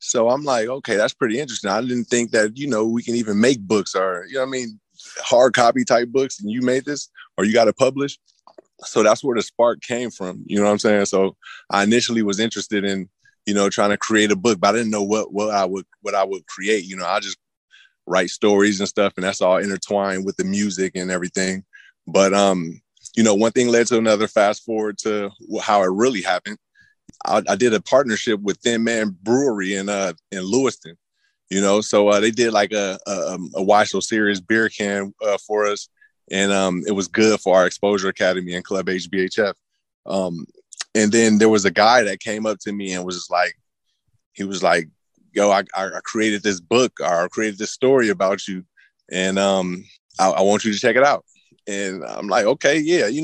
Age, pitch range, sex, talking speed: 20-39, 95-120 Hz, male, 220 wpm